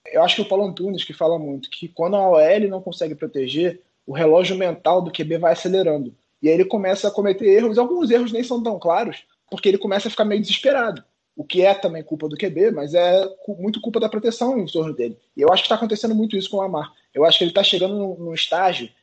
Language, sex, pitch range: Portuguese, male, 165-210 Hz